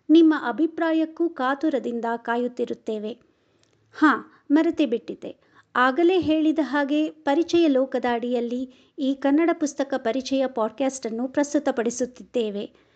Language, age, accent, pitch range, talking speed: Kannada, 50-69, native, 240-315 Hz, 90 wpm